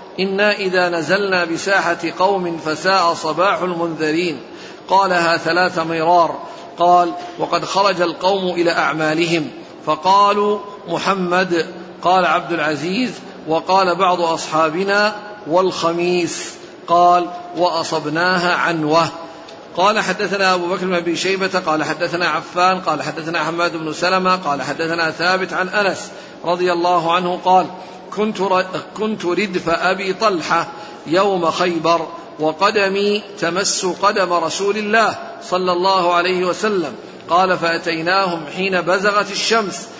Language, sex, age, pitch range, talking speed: Arabic, male, 50-69, 170-195 Hz, 110 wpm